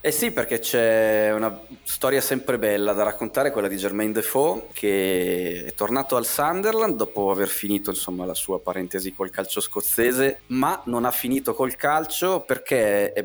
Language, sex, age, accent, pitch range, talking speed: Italian, male, 20-39, native, 95-115 Hz, 170 wpm